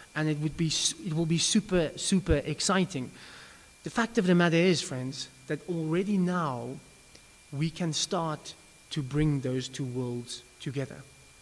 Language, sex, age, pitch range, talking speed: English, male, 20-39, 130-155 Hz, 150 wpm